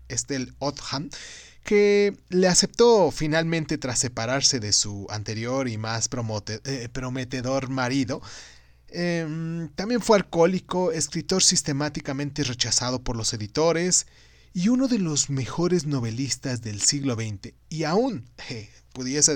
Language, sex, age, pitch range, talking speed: Spanish, male, 30-49, 115-165 Hz, 115 wpm